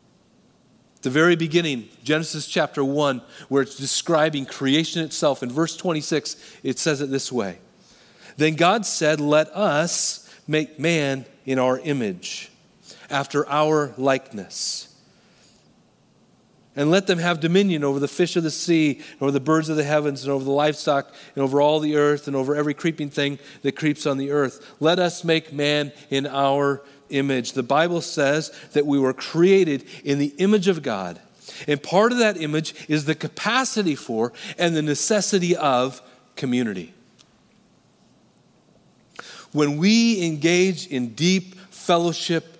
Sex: male